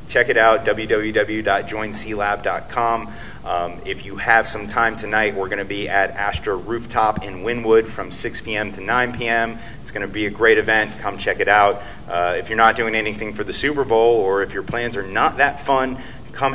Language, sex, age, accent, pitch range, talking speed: English, male, 30-49, American, 105-120 Hz, 205 wpm